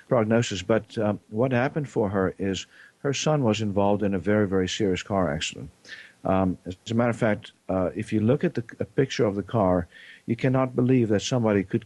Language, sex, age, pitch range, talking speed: English, male, 50-69, 95-120 Hz, 215 wpm